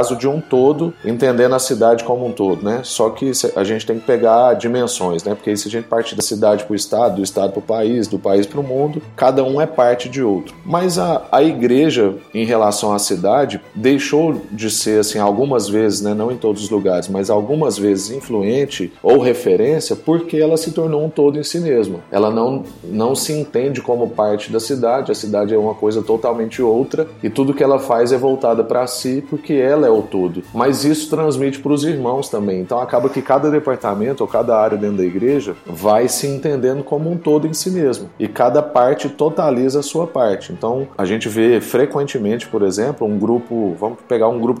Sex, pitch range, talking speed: male, 110-145 Hz, 215 wpm